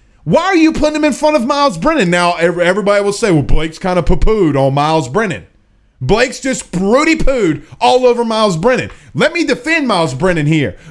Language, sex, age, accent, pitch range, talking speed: English, male, 30-49, American, 190-315 Hz, 205 wpm